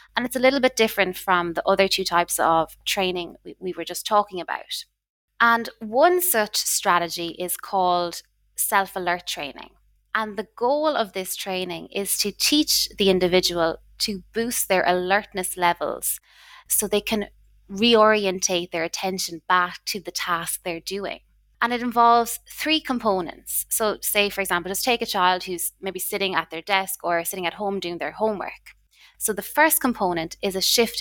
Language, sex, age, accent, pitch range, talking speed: English, female, 20-39, Irish, 180-225 Hz, 170 wpm